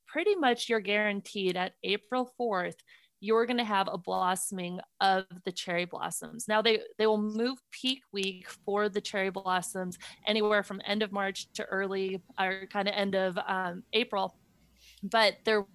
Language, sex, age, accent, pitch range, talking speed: English, female, 30-49, American, 190-220 Hz, 170 wpm